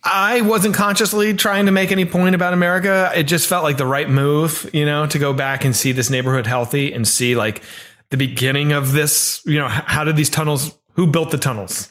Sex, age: male, 30-49